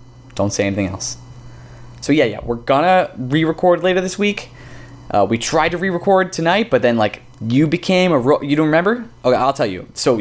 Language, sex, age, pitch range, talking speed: English, male, 20-39, 110-130 Hz, 195 wpm